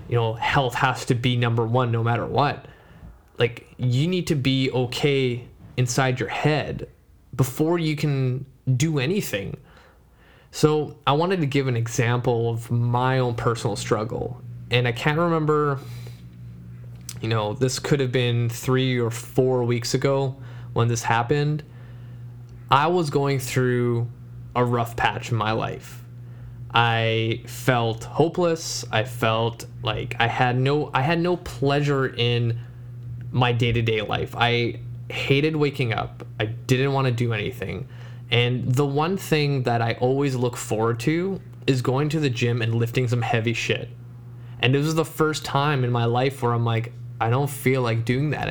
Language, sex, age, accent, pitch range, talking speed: English, male, 20-39, American, 120-135 Hz, 160 wpm